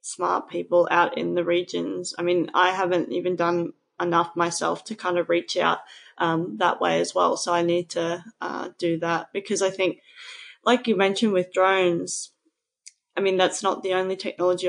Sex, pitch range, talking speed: female, 170-195 Hz, 190 wpm